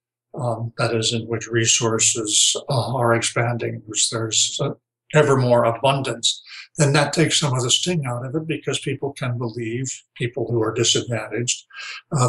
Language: English